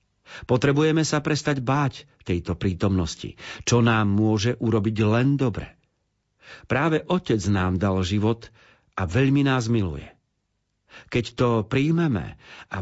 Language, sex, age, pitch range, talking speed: Slovak, male, 50-69, 105-135 Hz, 115 wpm